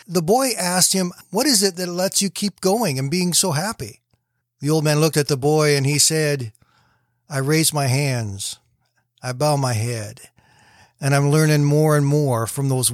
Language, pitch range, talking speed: English, 120-155 Hz, 195 wpm